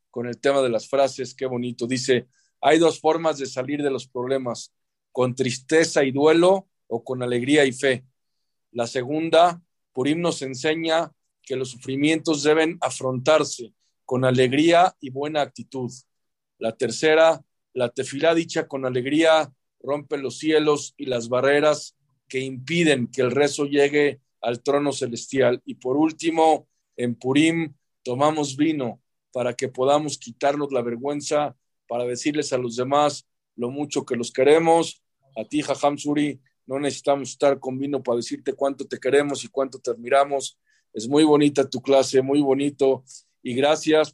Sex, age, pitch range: male, 50-69, 130-150 Hz